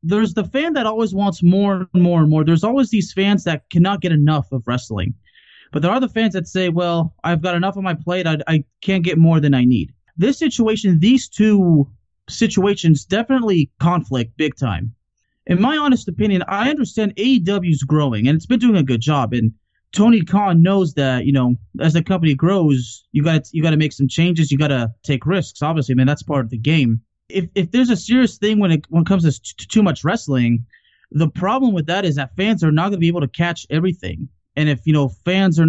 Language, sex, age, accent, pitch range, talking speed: English, male, 30-49, American, 135-185 Hz, 230 wpm